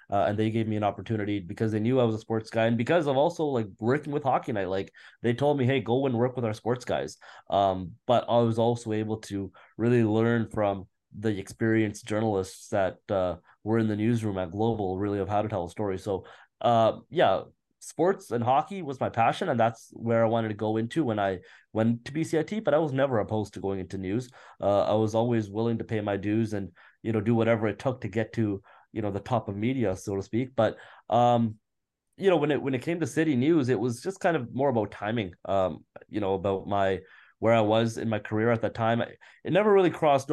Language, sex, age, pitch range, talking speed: English, male, 20-39, 105-130 Hz, 240 wpm